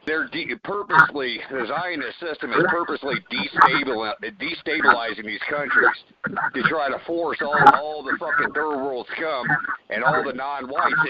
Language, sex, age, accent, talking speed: English, male, 50-69, American, 140 wpm